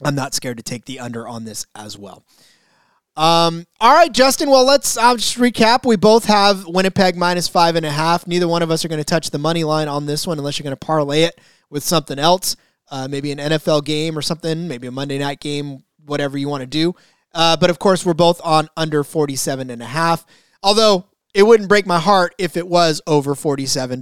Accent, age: American, 30-49